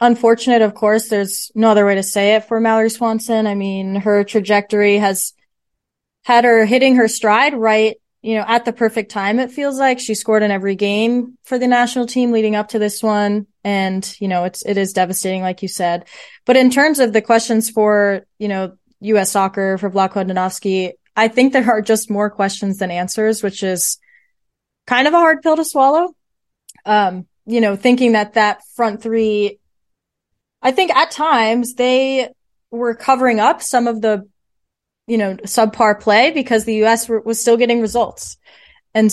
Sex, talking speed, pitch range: female, 185 wpm, 195-235 Hz